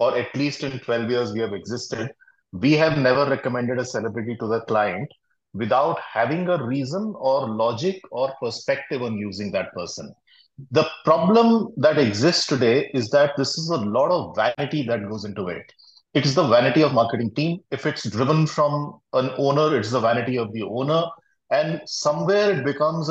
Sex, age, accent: male, 30-49, Indian